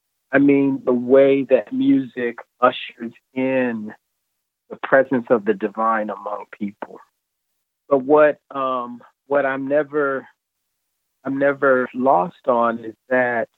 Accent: American